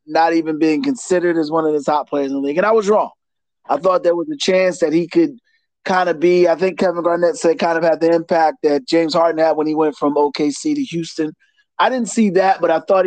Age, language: 30-49, English